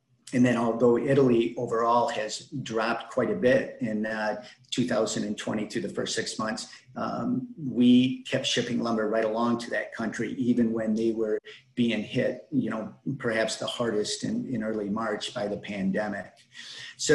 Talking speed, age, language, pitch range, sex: 165 wpm, 50-69, English, 110-125 Hz, male